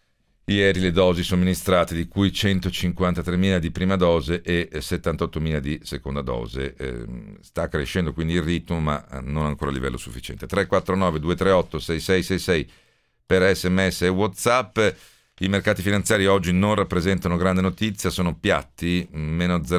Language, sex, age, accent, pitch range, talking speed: Italian, male, 50-69, native, 80-90 Hz, 135 wpm